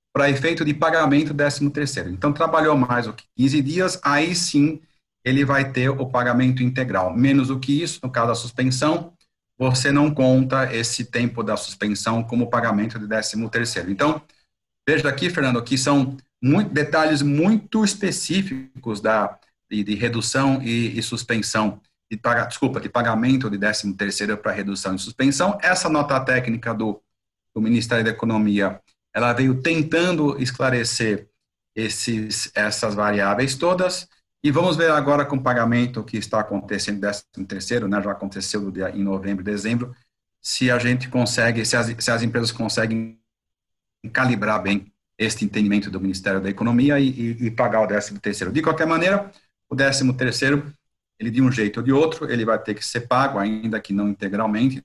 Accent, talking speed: Brazilian, 165 wpm